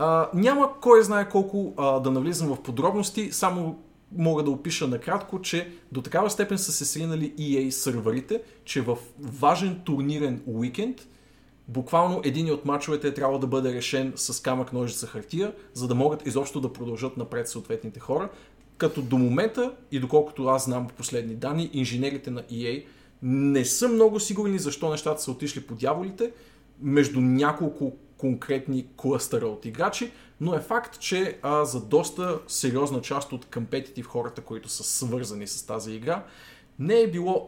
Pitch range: 125-175 Hz